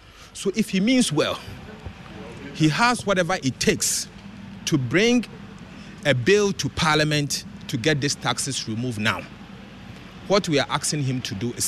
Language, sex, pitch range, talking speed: English, male, 120-185 Hz, 155 wpm